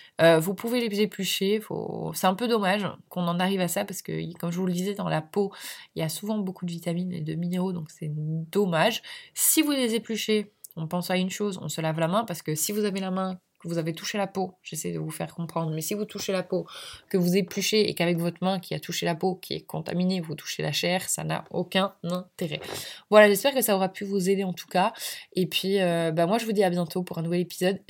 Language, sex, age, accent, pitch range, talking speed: French, female, 20-39, French, 160-200 Hz, 260 wpm